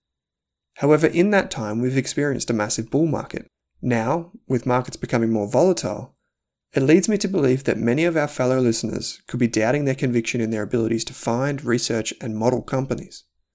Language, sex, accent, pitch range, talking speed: English, male, Australian, 110-145 Hz, 180 wpm